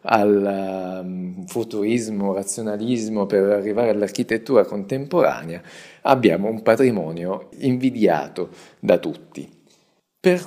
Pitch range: 90-125 Hz